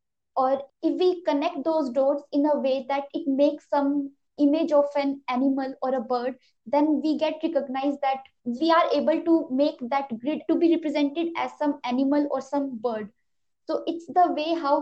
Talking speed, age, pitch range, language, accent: 185 wpm, 20-39, 270-310 Hz, English, Indian